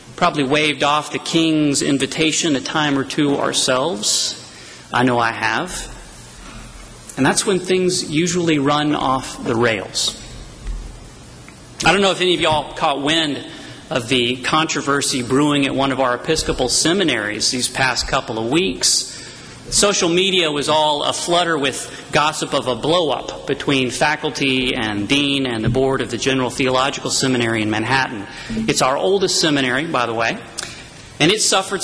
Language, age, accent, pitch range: English, 40-59, American, 130-165 Hz